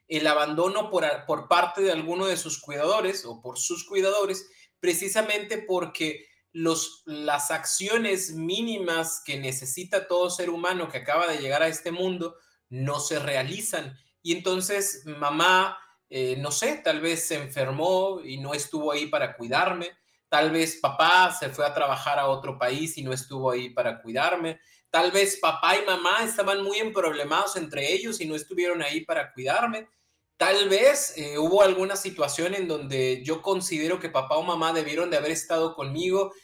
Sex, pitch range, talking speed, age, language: male, 145-190 Hz, 170 wpm, 30-49, Spanish